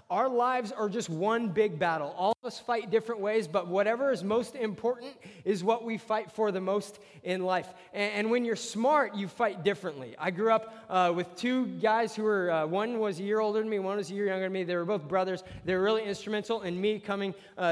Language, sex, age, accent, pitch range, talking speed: English, male, 20-39, American, 180-220 Hz, 240 wpm